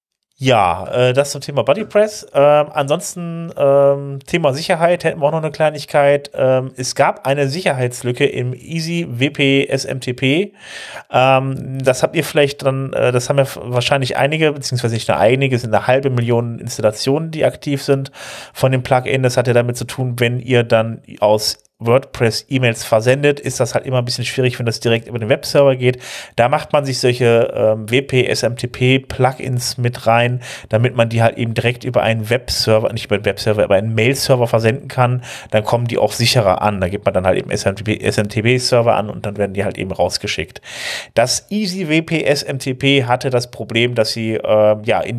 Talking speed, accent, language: 180 wpm, German, German